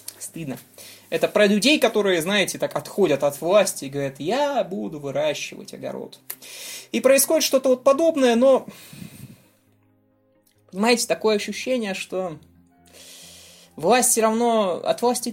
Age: 20-39